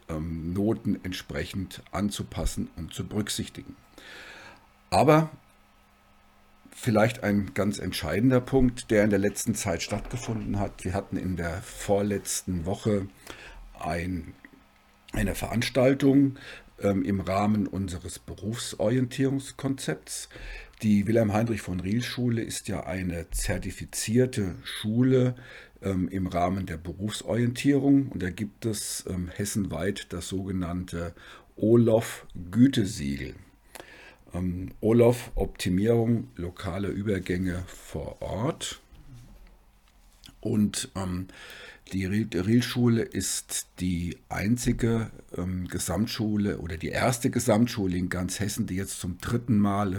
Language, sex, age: German, male, 50-69